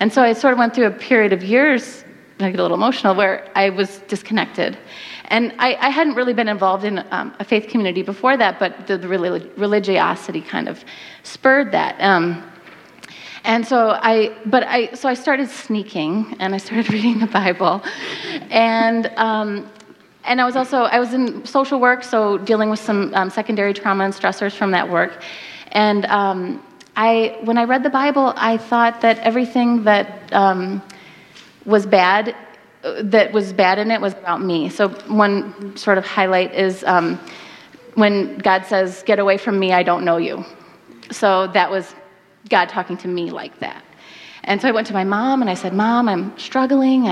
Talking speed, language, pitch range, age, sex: 185 wpm, English, 195-240 Hz, 30-49, female